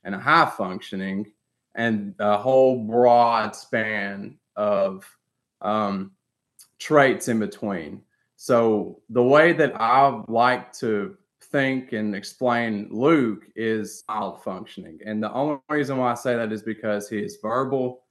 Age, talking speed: 20-39, 135 wpm